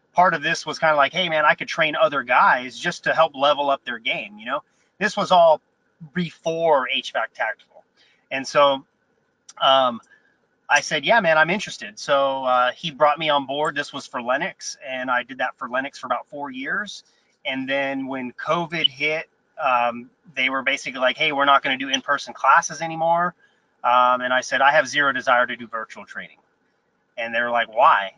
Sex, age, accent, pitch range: male, 30-49, American, 130-175 Hz